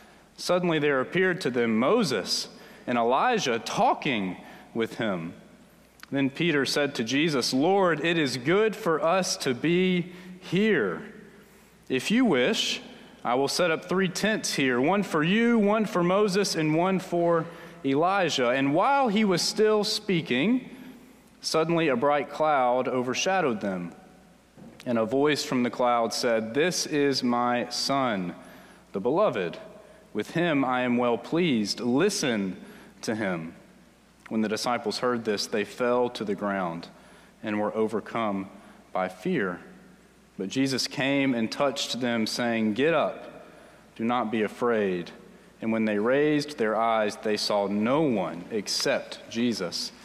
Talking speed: 145 wpm